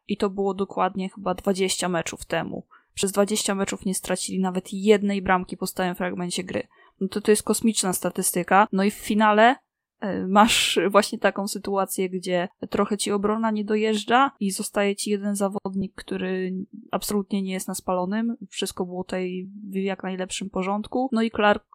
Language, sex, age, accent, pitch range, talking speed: Polish, female, 20-39, native, 180-205 Hz, 165 wpm